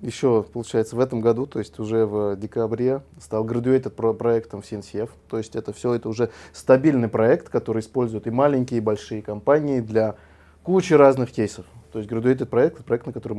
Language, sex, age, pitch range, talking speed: Russian, male, 20-39, 105-125 Hz, 190 wpm